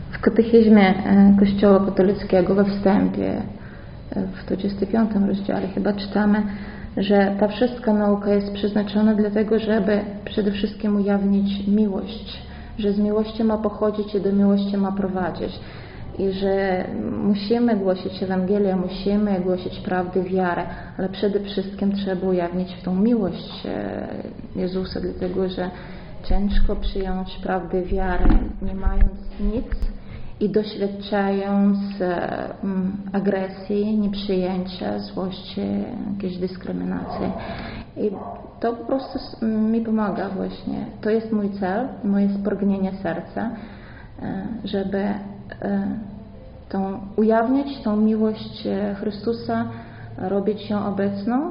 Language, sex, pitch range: Polish, female, 190-215 Hz